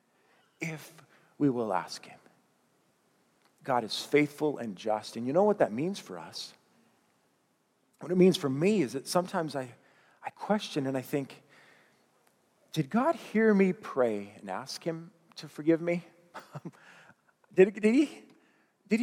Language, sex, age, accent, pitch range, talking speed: English, male, 40-59, American, 145-190 Hz, 145 wpm